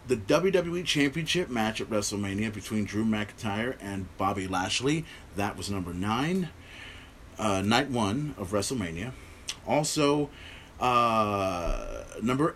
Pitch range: 110-175 Hz